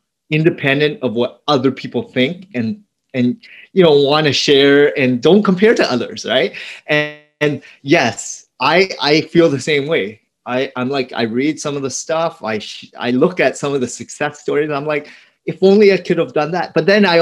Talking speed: 210 wpm